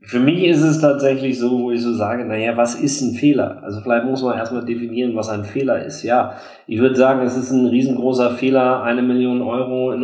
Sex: male